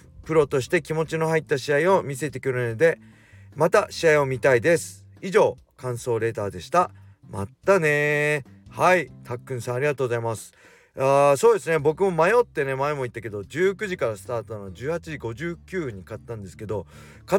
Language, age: Japanese, 40-59